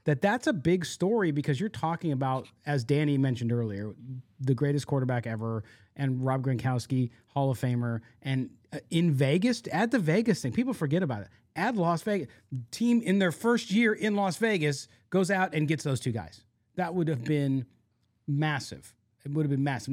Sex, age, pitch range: male, 30-49, 110-145 Hz